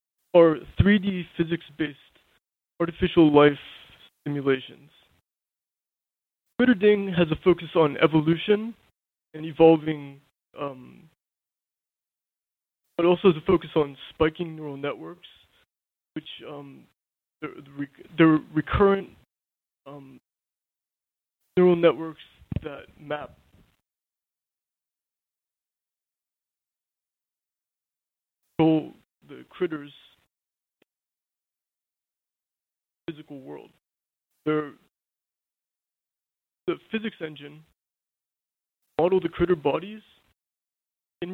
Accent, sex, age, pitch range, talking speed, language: American, male, 20-39, 145-175 Hz, 70 wpm, English